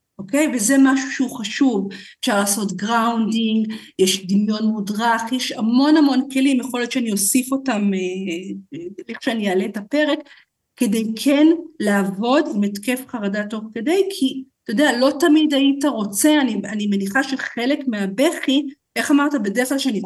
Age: 50-69